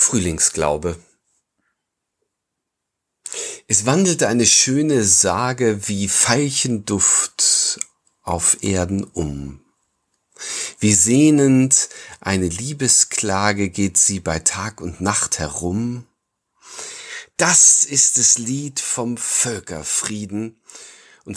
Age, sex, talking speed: 40-59, male, 80 wpm